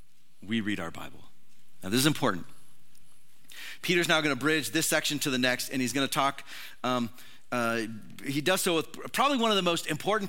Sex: male